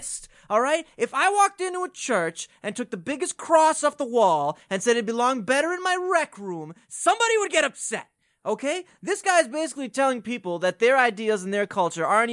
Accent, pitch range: American, 200-310 Hz